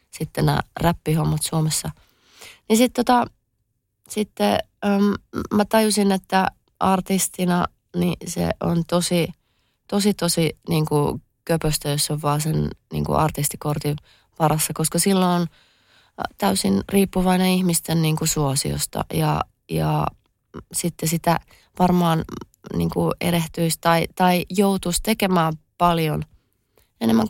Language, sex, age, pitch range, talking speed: Finnish, female, 30-49, 145-185 Hz, 110 wpm